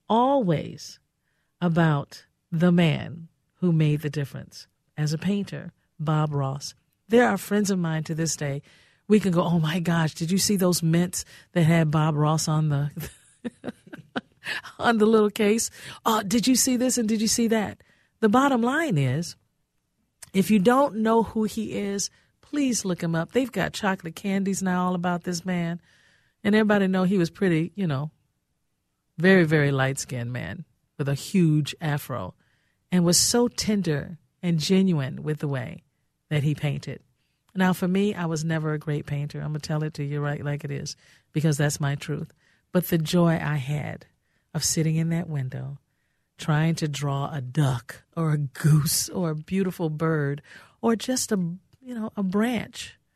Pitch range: 145-190 Hz